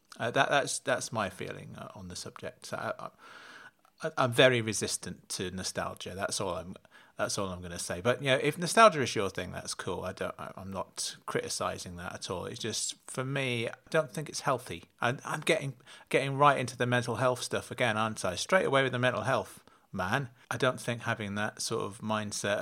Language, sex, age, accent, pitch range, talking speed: English, male, 30-49, British, 95-125 Hz, 210 wpm